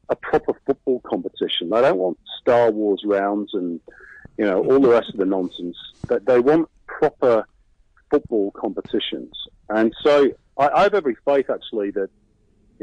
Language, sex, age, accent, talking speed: English, male, 50-69, British, 165 wpm